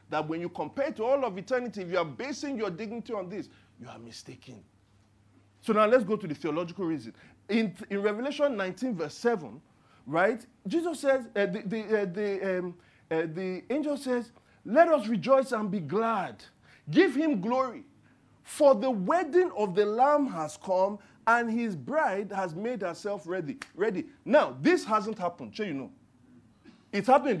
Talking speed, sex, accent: 180 wpm, male, Nigerian